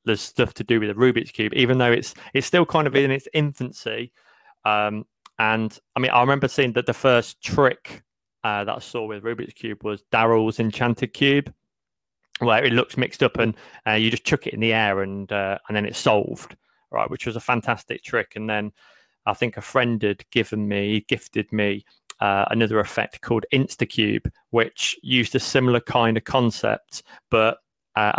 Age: 30-49